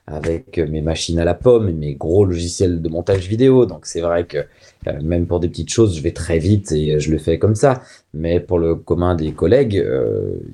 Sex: male